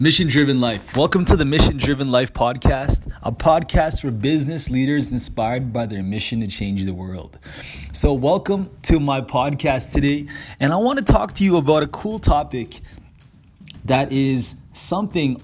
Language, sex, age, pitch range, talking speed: English, male, 20-39, 115-150 Hz, 165 wpm